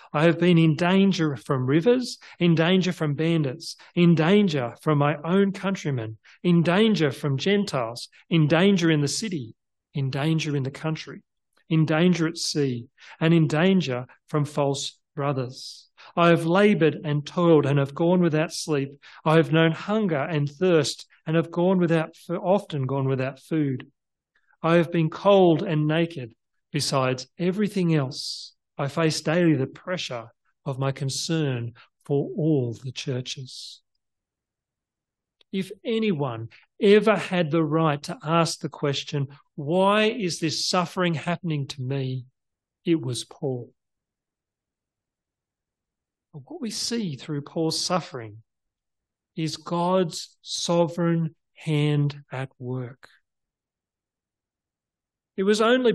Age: 40-59